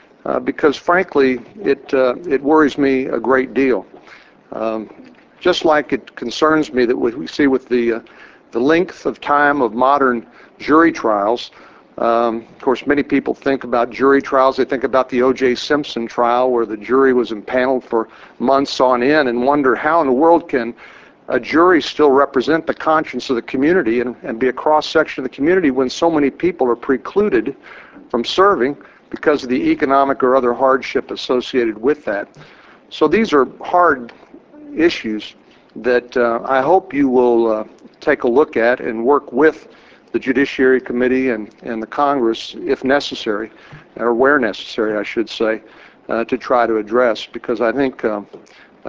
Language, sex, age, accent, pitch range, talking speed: English, male, 60-79, American, 120-145 Hz, 175 wpm